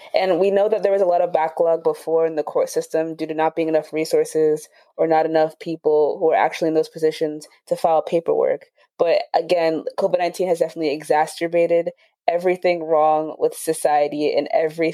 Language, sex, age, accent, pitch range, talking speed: English, female, 20-39, American, 160-185 Hz, 185 wpm